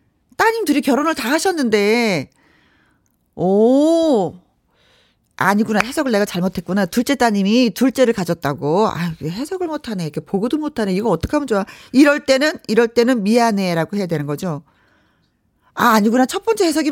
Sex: female